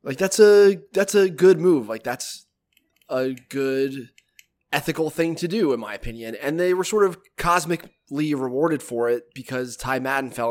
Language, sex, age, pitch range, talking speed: English, male, 20-39, 125-150 Hz, 175 wpm